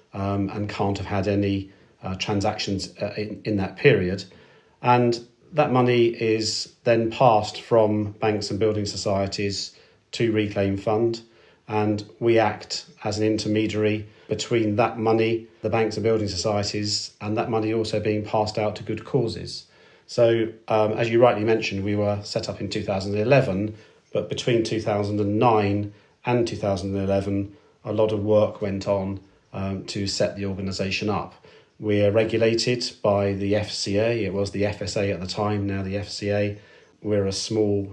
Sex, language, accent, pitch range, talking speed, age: male, English, British, 100-110 Hz, 155 wpm, 40-59